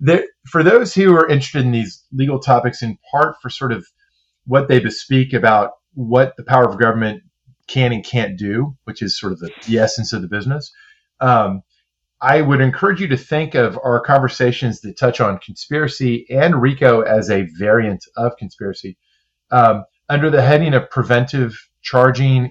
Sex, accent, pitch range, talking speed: male, American, 110-140 Hz, 175 wpm